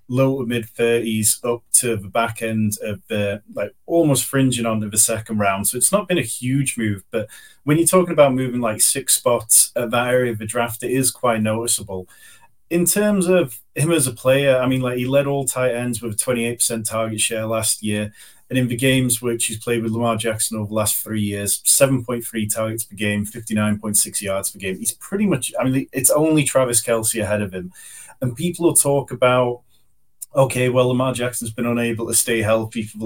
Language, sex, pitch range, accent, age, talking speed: English, male, 110-135 Hz, British, 30-49, 210 wpm